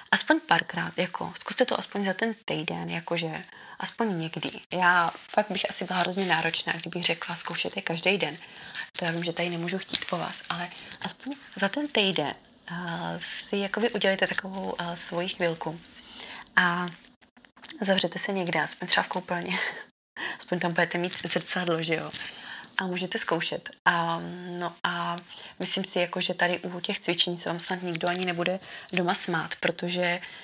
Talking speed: 170 wpm